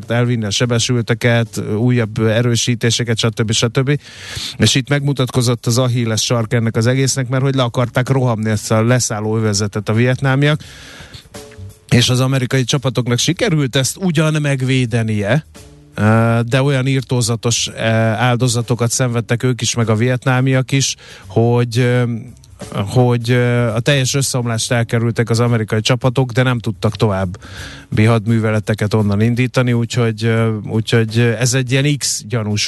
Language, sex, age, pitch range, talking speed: Hungarian, male, 30-49, 110-130 Hz, 125 wpm